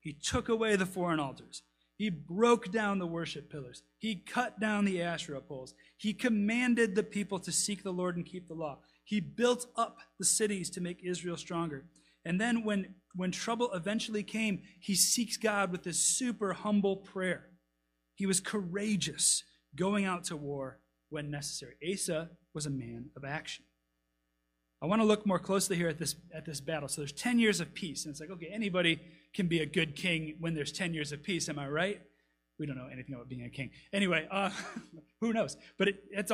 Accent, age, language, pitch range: American, 30-49, English, 150-215 Hz